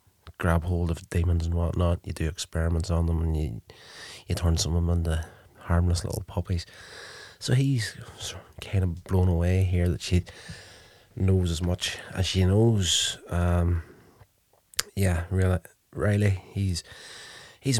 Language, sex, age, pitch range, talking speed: English, male, 30-49, 85-95 Hz, 150 wpm